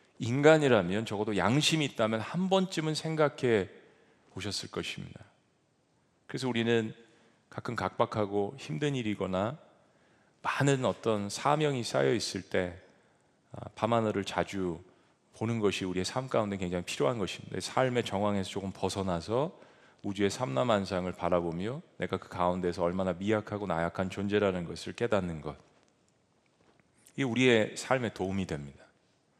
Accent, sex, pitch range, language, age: native, male, 100-140 Hz, Korean, 40-59